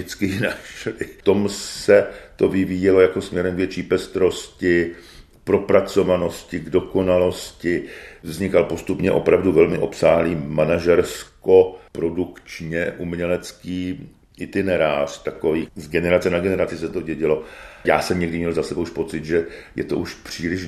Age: 50-69